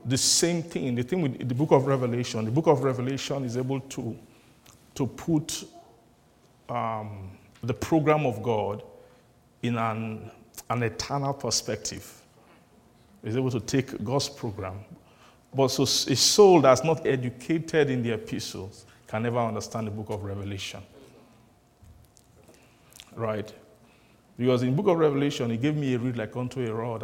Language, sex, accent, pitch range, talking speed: English, male, Nigerian, 110-135 Hz, 150 wpm